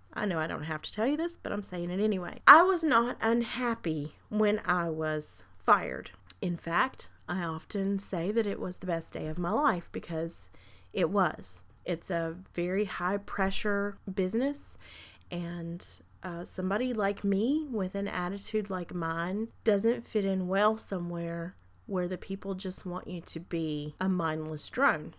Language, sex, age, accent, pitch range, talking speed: English, female, 30-49, American, 160-215 Hz, 170 wpm